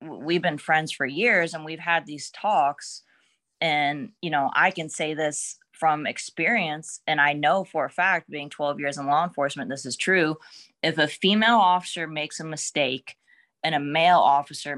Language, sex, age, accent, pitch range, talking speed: English, female, 20-39, American, 145-175 Hz, 185 wpm